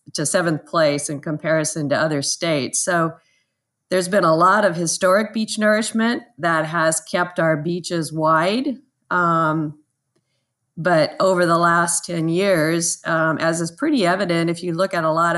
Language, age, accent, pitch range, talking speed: English, 40-59, American, 150-170 Hz, 160 wpm